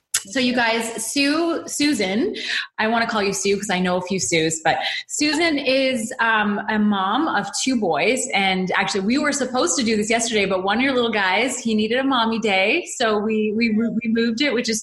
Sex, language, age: female, English, 20-39